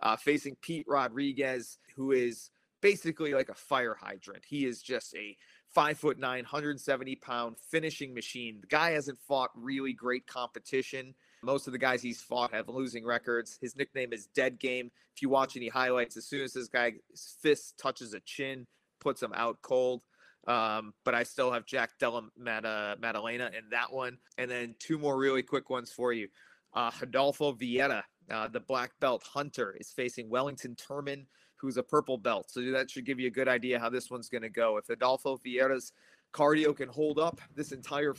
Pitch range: 120-140 Hz